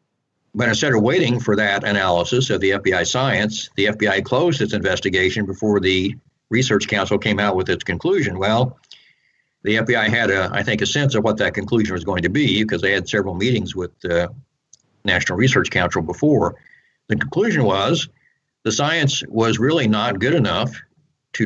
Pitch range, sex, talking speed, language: 100-125 Hz, male, 180 wpm, English